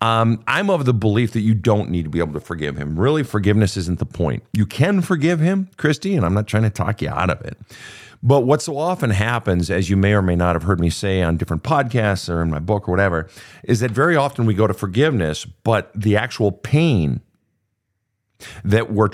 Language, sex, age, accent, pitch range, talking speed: English, male, 50-69, American, 105-140 Hz, 230 wpm